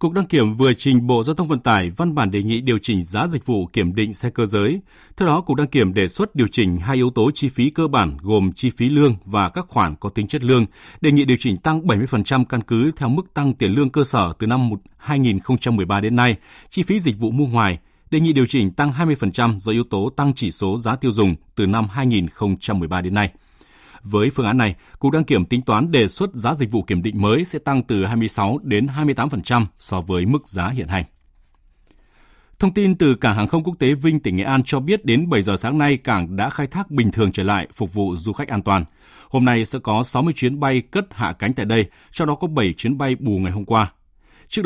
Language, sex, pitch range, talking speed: Vietnamese, male, 100-140 Hz, 245 wpm